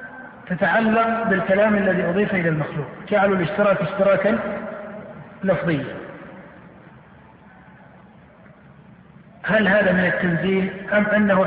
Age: 50-69